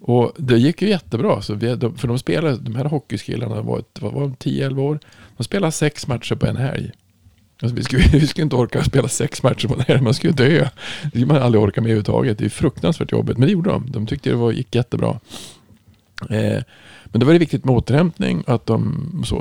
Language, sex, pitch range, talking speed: Swedish, male, 110-140 Hz, 230 wpm